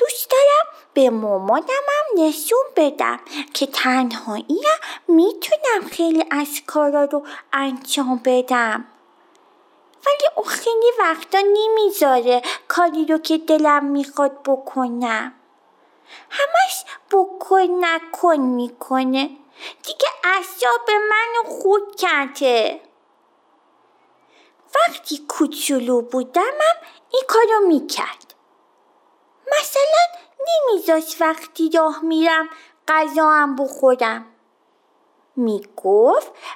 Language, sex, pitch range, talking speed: Persian, female, 270-365 Hz, 80 wpm